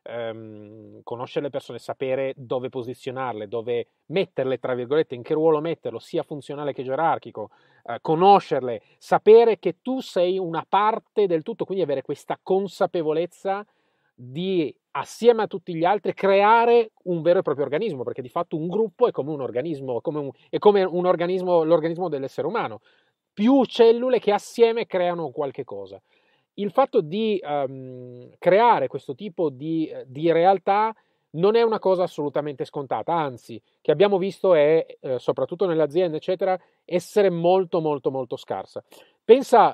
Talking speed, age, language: 150 wpm, 30-49, Italian